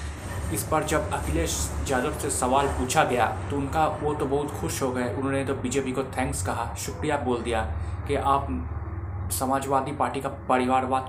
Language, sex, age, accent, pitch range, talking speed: Hindi, male, 20-39, native, 120-140 Hz, 175 wpm